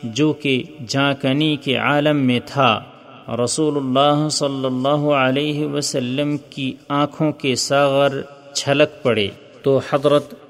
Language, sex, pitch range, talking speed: Urdu, male, 130-145 Hz, 120 wpm